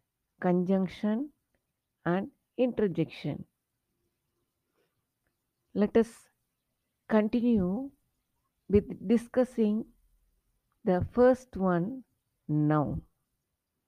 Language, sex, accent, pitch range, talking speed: Tamil, female, native, 185-240 Hz, 50 wpm